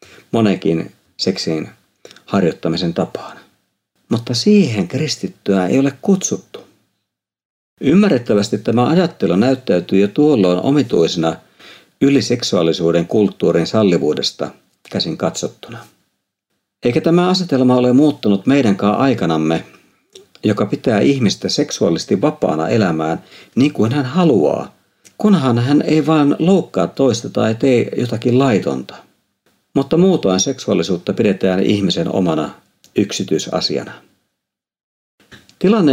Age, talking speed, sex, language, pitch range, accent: 50-69, 95 wpm, male, Finnish, 95-145 Hz, native